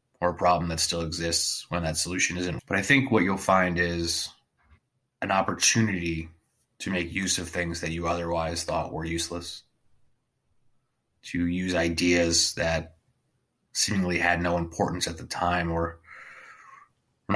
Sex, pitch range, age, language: male, 85-90 Hz, 30-49, English